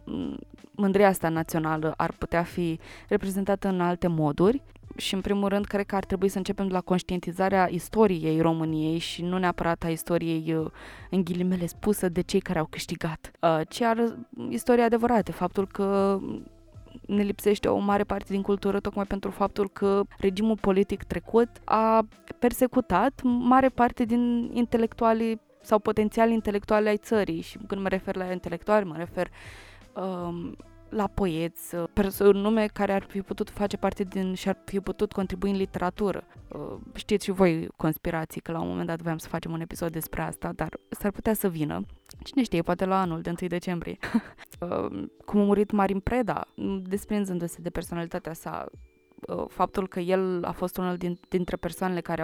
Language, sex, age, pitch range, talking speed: Romanian, female, 20-39, 170-205 Hz, 160 wpm